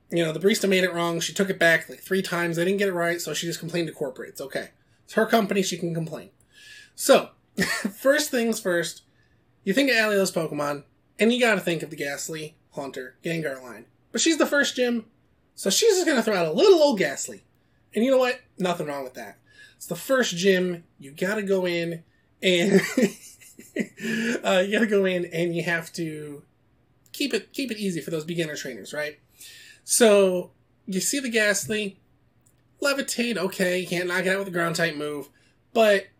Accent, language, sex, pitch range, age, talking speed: American, English, male, 165-225 Hz, 20-39, 200 wpm